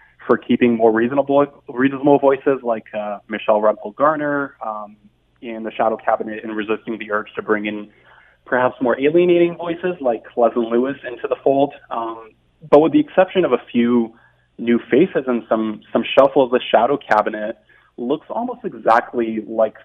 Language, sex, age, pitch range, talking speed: English, male, 20-39, 110-140 Hz, 165 wpm